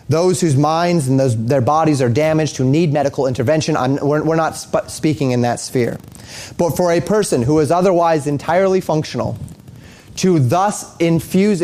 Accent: American